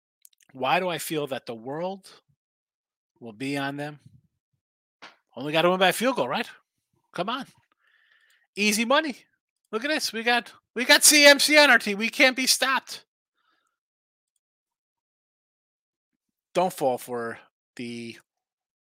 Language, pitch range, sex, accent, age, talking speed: English, 130-195 Hz, male, American, 30-49, 135 wpm